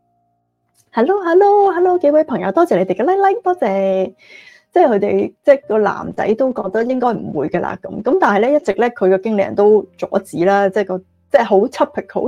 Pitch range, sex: 190-245 Hz, female